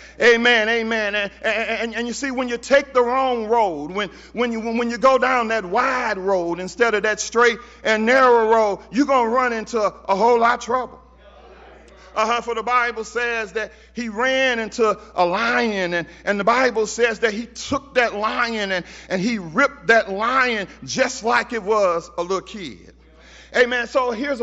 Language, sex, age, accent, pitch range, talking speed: English, male, 40-59, American, 215-255 Hz, 190 wpm